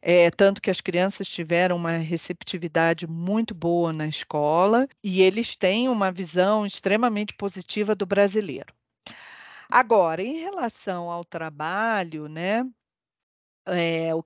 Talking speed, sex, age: 115 wpm, female, 40-59